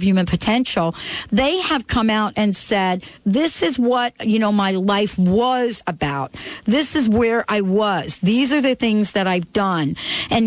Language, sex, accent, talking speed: English, female, American, 170 wpm